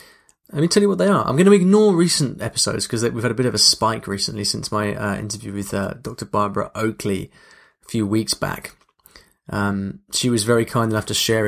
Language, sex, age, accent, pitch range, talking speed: English, male, 20-39, British, 105-140 Hz, 235 wpm